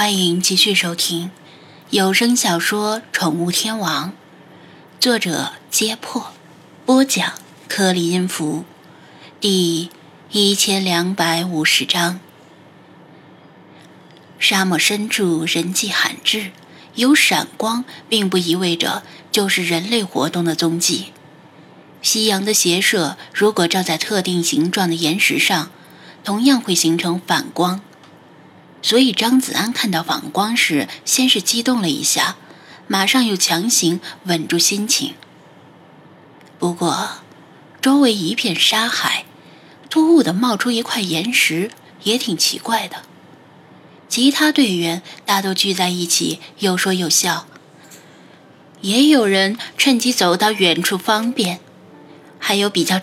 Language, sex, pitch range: Chinese, female, 170-220 Hz